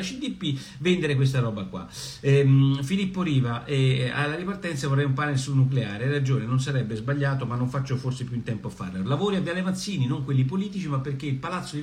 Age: 50-69